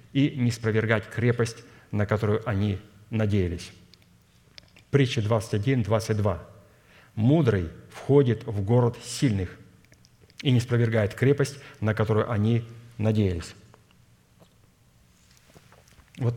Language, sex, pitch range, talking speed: Russian, male, 105-120 Hz, 90 wpm